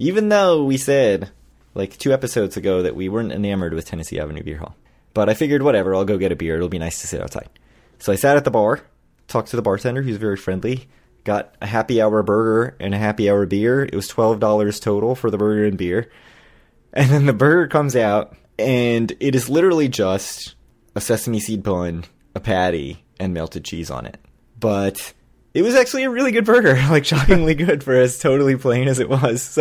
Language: English